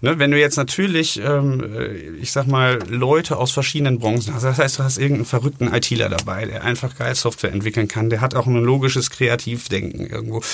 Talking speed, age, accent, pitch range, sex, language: 190 wpm, 30-49, German, 120-145 Hz, male, German